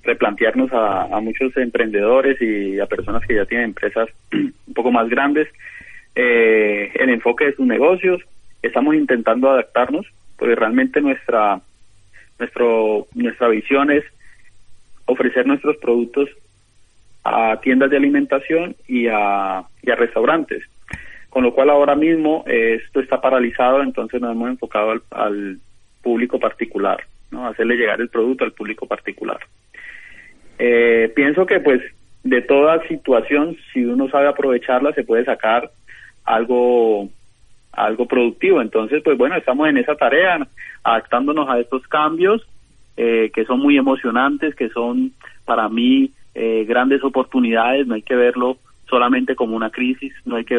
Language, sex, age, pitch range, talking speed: Spanish, male, 30-49, 110-140 Hz, 140 wpm